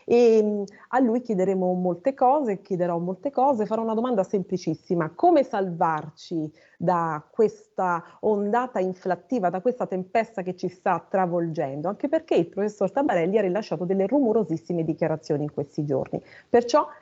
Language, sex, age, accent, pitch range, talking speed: Italian, female, 30-49, native, 175-255 Hz, 140 wpm